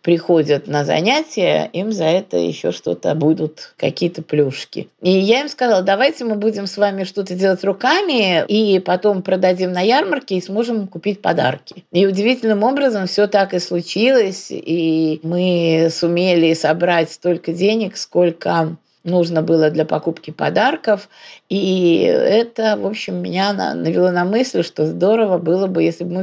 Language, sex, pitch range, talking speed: Russian, female, 165-200 Hz, 150 wpm